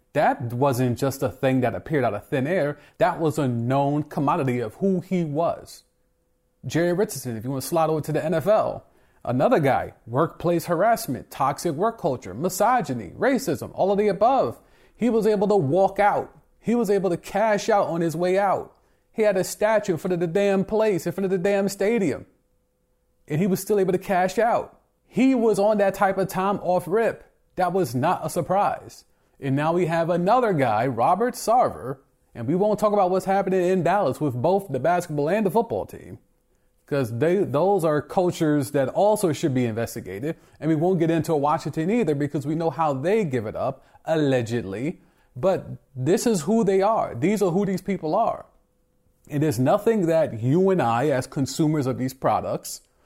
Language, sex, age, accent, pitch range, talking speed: English, male, 30-49, American, 140-195 Hz, 195 wpm